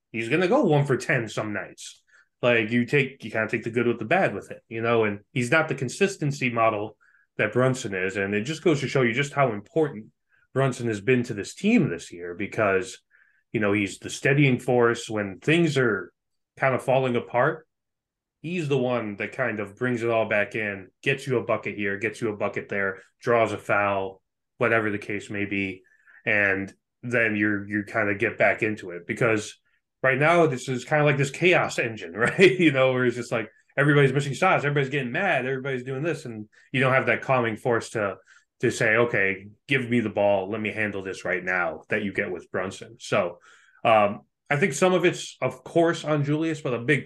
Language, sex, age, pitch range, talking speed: English, male, 20-39, 105-140 Hz, 220 wpm